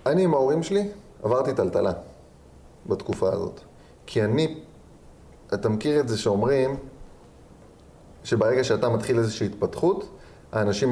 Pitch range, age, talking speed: 105-165 Hz, 30-49, 115 wpm